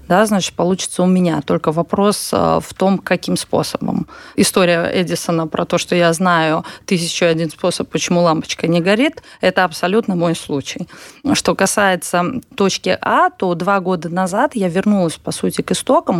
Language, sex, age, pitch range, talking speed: Russian, female, 20-39, 170-205 Hz, 155 wpm